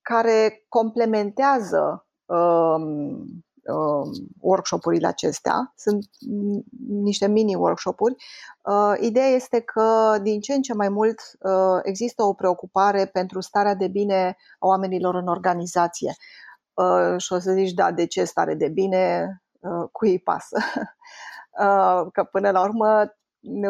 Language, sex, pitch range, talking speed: Romanian, female, 185-225 Hz, 135 wpm